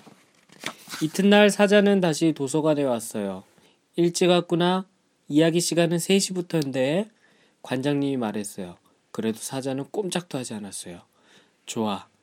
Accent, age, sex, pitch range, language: native, 20-39, male, 120-170 Hz, Korean